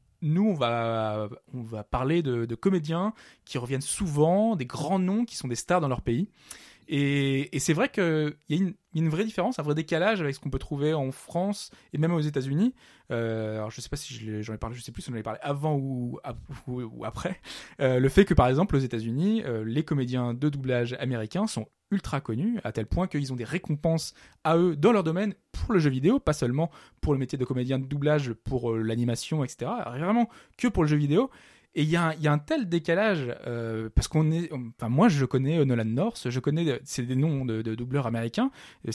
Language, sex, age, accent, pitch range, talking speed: French, male, 20-39, French, 125-180 Hz, 235 wpm